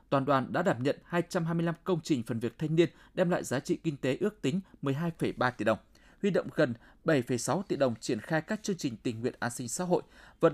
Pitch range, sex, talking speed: 135-175 Hz, male, 235 wpm